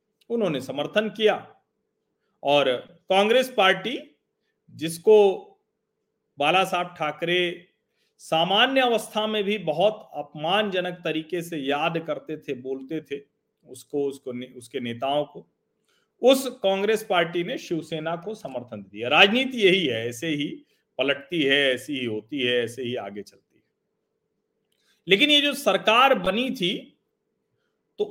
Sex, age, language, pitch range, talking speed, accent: male, 40-59, Hindi, 150-215 Hz, 125 wpm, native